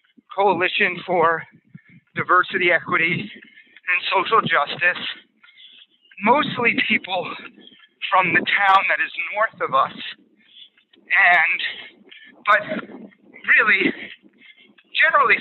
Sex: male